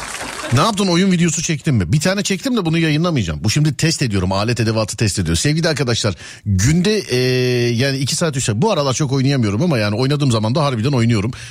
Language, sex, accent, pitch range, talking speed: Turkish, male, native, 115-165 Hz, 210 wpm